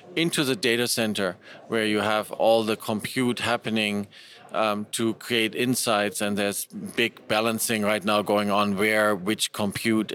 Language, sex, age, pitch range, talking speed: English, male, 40-59, 105-120 Hz, 155 wpm